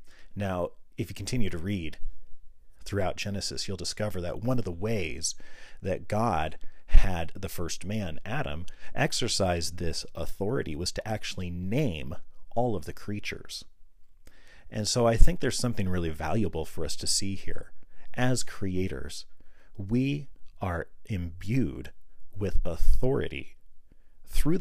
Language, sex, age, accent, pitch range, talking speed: English, male, 40-59, American, 85-110 Hz, 130 wpm